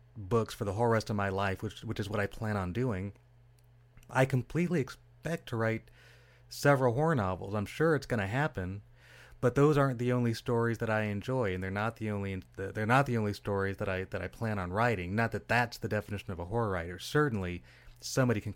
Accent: American